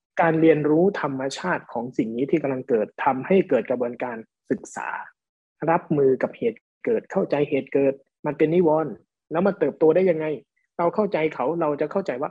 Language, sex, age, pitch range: Thai, male, 20-39, 140-175 Hz